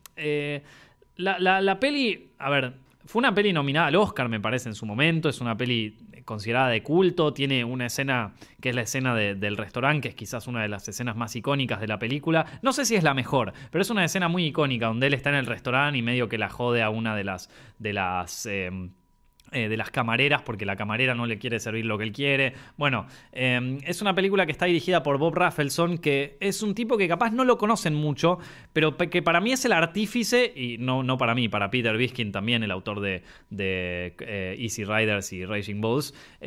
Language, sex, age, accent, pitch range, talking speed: Spanish, male, 20-39, Argentinian, 115-170 Hz, 230 wpm